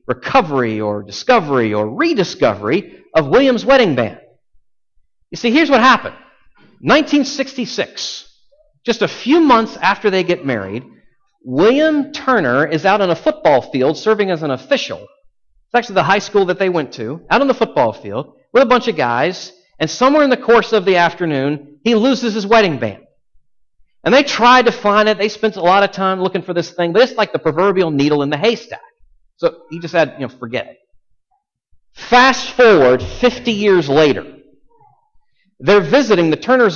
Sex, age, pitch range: male, 50-69, 170-270 Hz